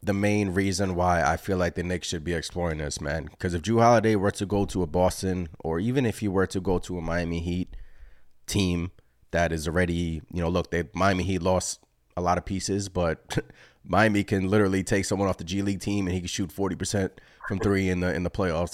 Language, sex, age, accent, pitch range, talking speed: English, male, 30-49, American, 90-110 Hz, 235 wpm